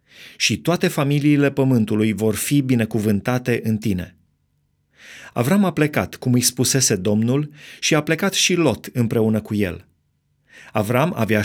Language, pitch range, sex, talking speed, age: Romanian, 110-140 Hz, male, 135 wpm, 30-49